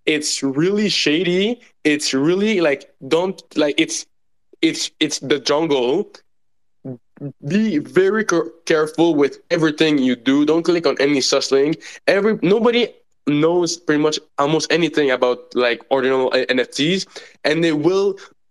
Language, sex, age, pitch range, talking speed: English, male, 20-39, 135-170 Hz, 135 wpm